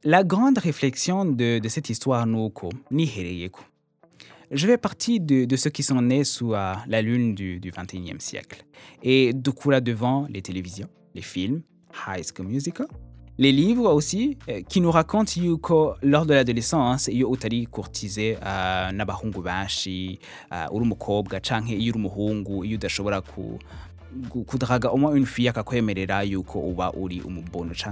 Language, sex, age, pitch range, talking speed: French, male, 20-39, 100-135 Hz, 125 wpm